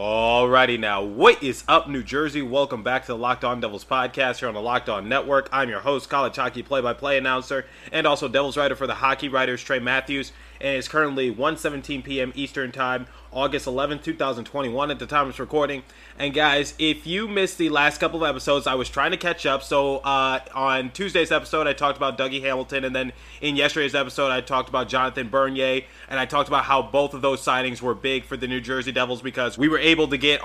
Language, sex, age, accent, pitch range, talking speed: English, male, 20-39, American, 130-145 Hz, 220 wpm